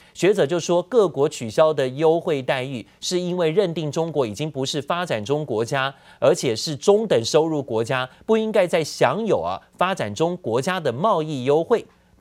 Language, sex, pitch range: Chinese, male, 125-180 Hz